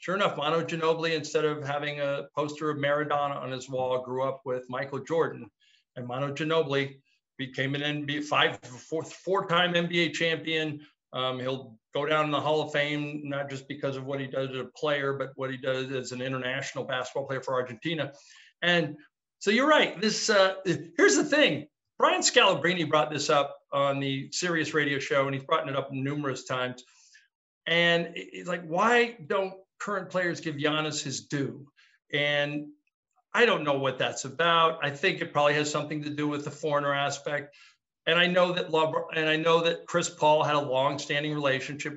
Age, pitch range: 50-69, 140-175 Hz